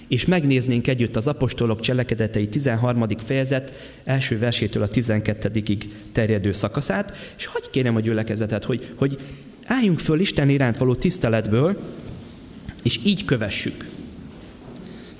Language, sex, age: Hungarian, male, 30-49